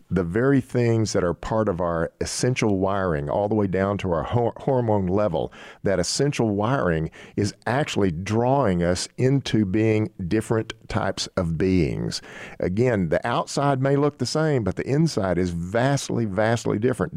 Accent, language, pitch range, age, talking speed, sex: American, English, 100-130 Hz, 50-69, 155 wpm, male